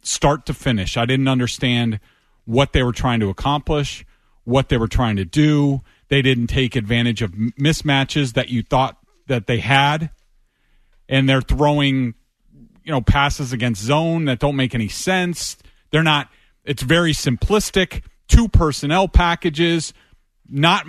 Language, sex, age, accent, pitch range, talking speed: English, male, 40-59, American, 125-165 Hz, 150 wpm